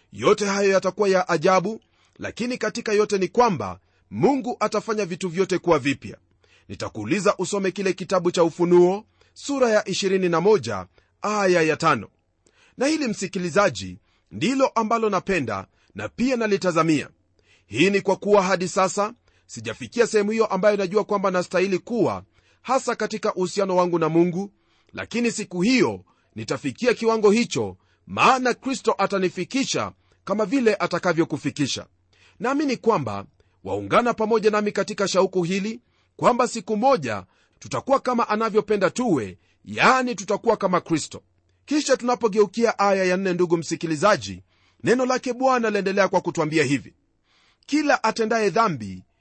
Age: 40-59